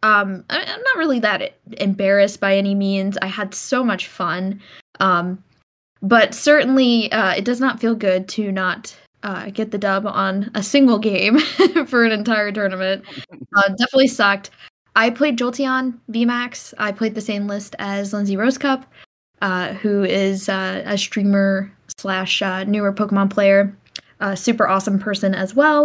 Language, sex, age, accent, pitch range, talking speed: English, female, 10-29, American, 195-235 Hz, 160 wpm